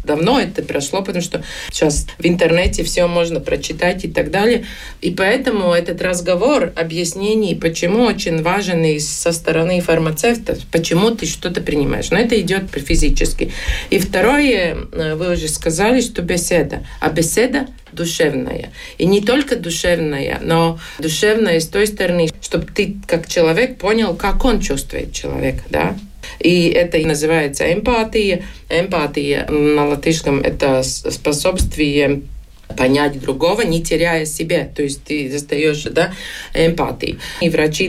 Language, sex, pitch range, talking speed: Russian, female, 155-205 Hz, 135 wpm